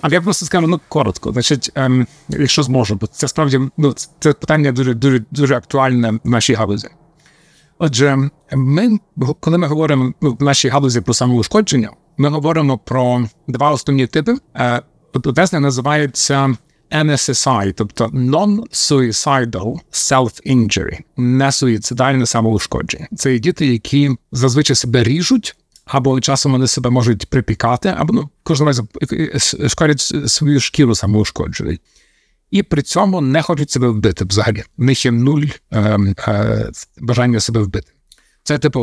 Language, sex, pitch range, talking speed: Ukrainian, male, 120-150 Hz, 140 wpm